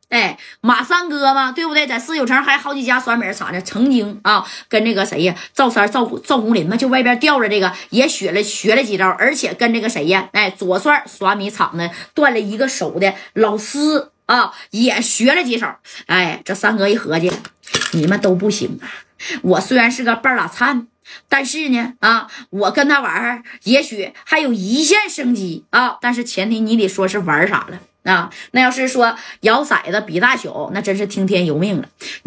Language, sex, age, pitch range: Chinese, female, 20-39, 200-270 Hz